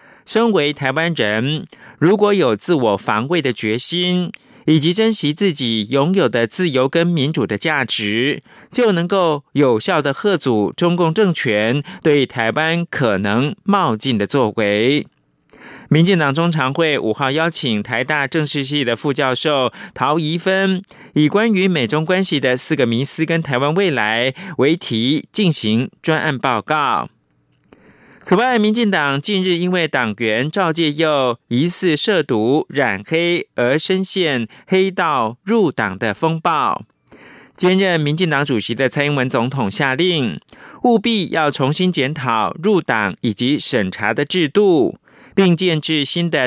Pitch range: 130-180 Hz